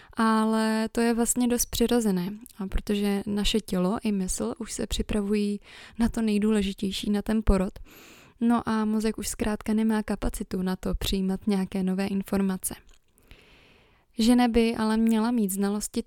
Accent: native